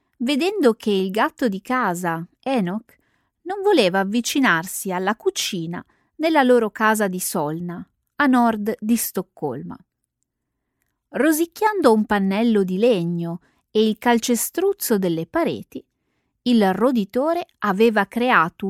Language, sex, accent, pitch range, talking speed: Italian, female, native, 190-275 Hz, 110 wpm